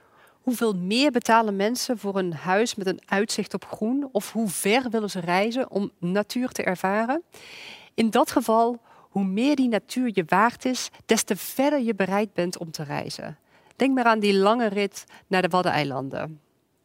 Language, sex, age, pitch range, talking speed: Dutch, female, 40-59, 180-235 Hz, 180 wpm